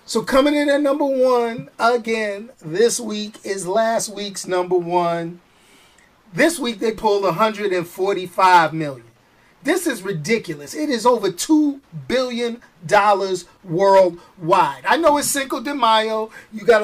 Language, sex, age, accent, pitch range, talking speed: English, male, 40-59, American, 210-285 Hz, 130 wpm